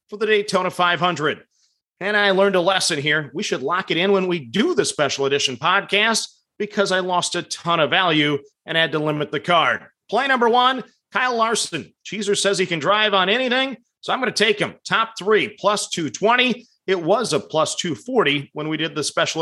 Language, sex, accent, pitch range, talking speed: English, male, American, 160-205 Hz, 205 wpm